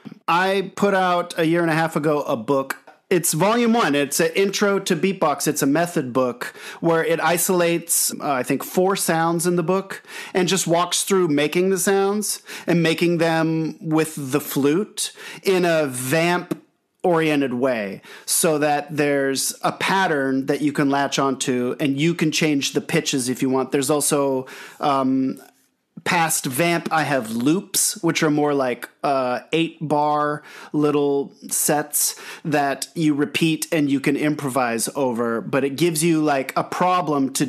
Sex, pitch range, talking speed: male, 140-170 Hz, 165 wpm